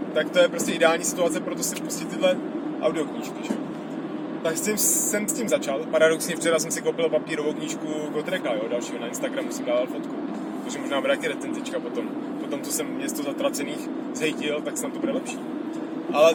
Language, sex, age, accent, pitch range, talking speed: Czech, male, 30-49, native, 280-305 Hz, 175 wpm